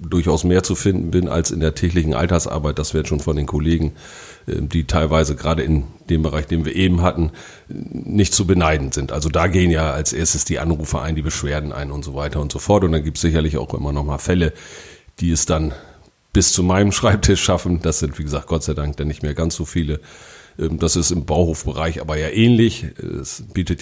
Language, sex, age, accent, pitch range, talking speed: German, male, 40-59, German, 75-90 Hz, 225 wpm